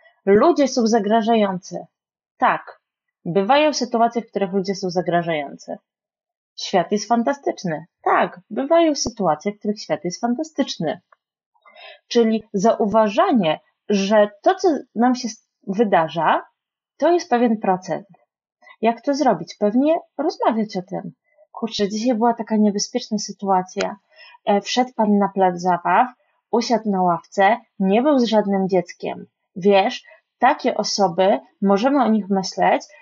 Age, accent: 30-49, native